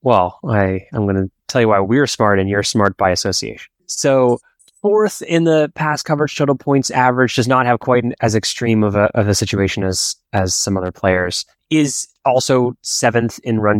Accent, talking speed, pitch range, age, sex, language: American, 200 wpm, 95-120 Hz, 20-39, male, English